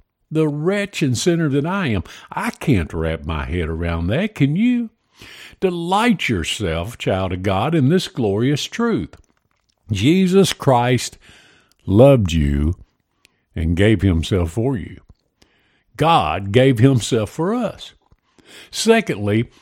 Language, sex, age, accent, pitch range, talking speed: English, male, 50-69, American, 100-160 Hz, 120 wpm